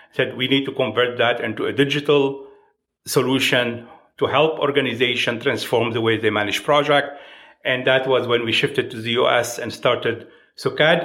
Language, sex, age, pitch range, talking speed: English, male, 50-69, 120-145 Hz, 170 wpm